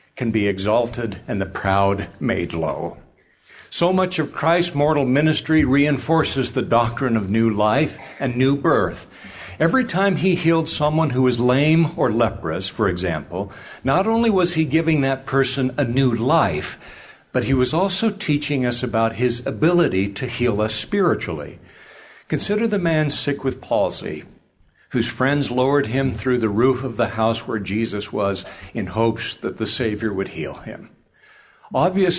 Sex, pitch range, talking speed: male, 105-145 Hz, 160 wpm